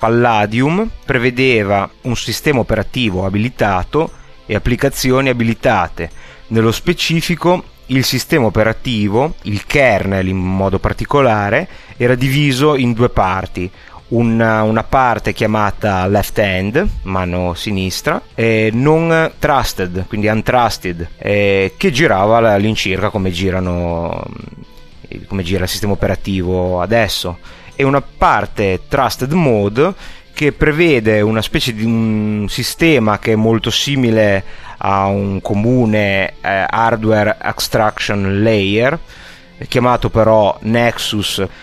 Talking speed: 105 wpm